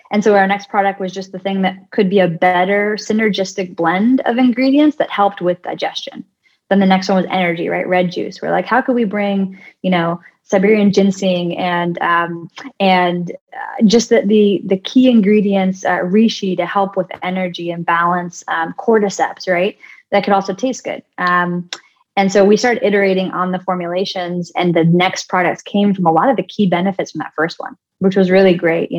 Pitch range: 180-205 Hz